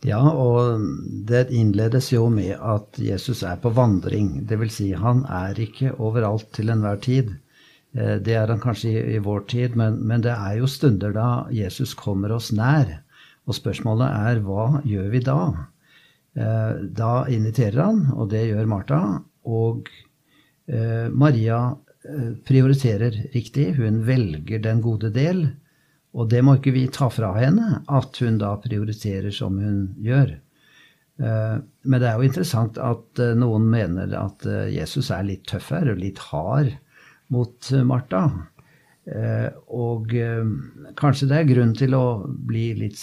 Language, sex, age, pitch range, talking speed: English, male, 50-69, 110-135 Hz, 155 wpm